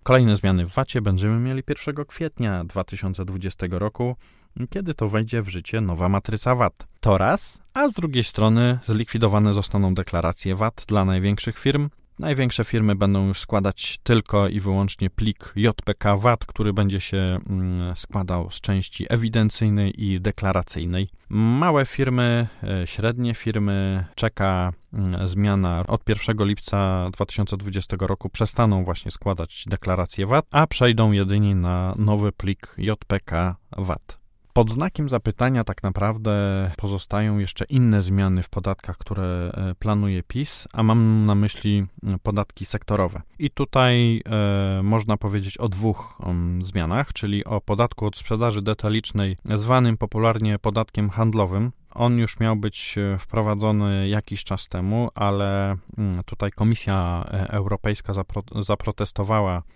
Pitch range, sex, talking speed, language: 95-115 Hz, male, 125 wpm, Polish